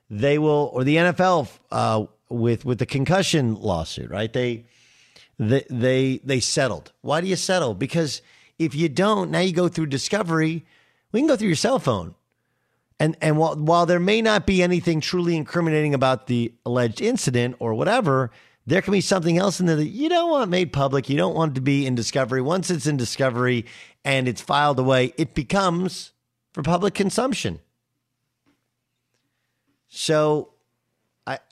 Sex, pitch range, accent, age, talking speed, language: male, 115-160 Hz, American, 50-69, 170 wpm, English